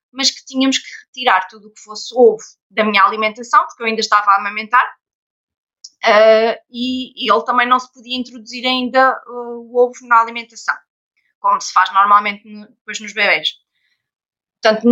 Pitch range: 210-245 Hz